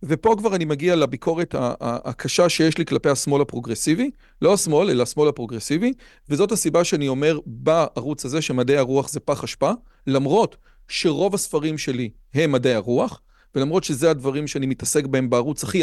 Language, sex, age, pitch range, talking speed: Hebrew, male, 40-59, 135-175 Hz, 160 wpm